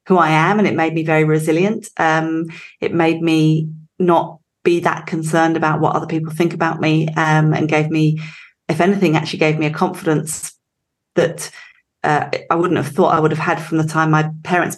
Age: 30-49